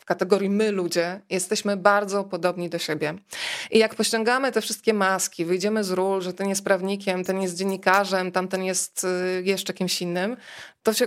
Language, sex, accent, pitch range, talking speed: Polish, female, native, 185-225 Hz, 170 wpm